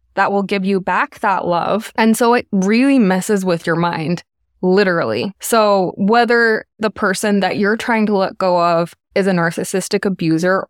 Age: 20-39